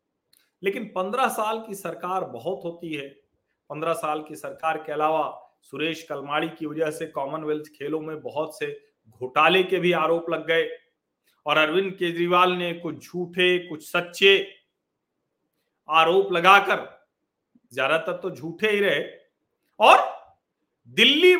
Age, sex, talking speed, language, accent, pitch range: 40-59, male, 130 wpm, Hindi, native, 155-195 Hz